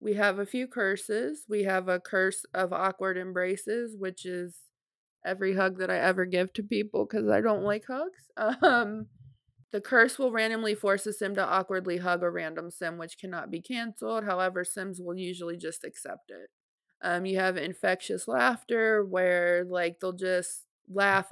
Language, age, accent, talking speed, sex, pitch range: English, 20-39, American, 175 wpm, female, 180-215 Hz